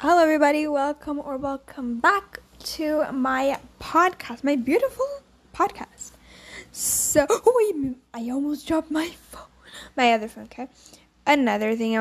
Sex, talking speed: female, 125 wpm